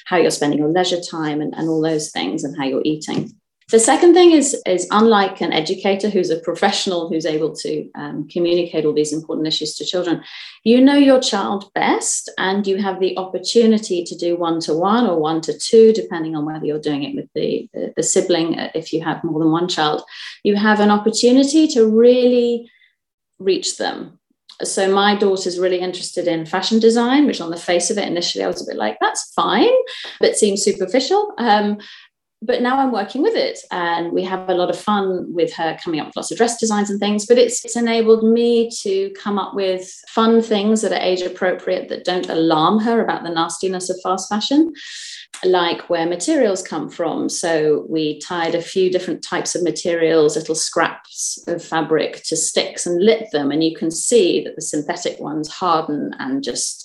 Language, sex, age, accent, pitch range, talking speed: English, female, 30-49, British, 165-225 Hz, 195 wpm